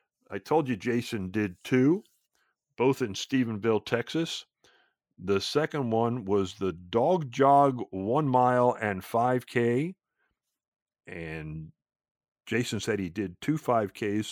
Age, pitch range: 50-69, 100-135 Hz